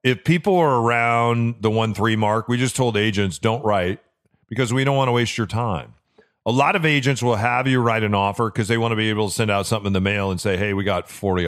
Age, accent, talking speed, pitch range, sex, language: 40-59, American, 260 wpm, 90-115 Hz, male, English